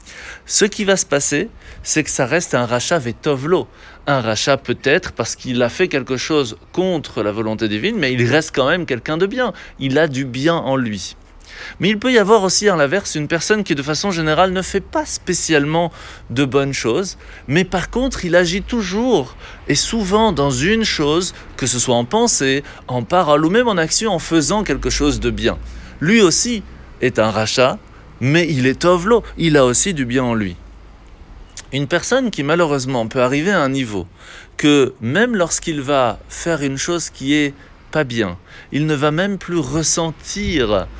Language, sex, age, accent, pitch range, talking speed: French, male, 30-49, French, 125-185 Hz, 190 wpm